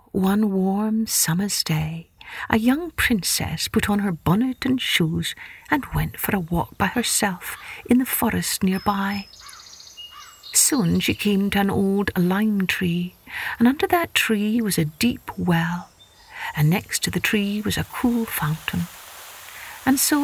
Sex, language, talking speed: female, English, 150 wpm